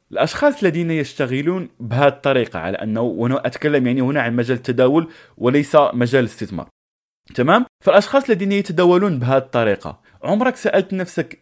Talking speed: 135 wpm